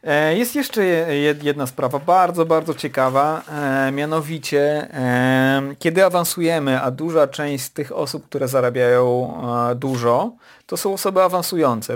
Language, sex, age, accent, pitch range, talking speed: Polish, male, 40-59, native, 130-160 Hz, 110 wpm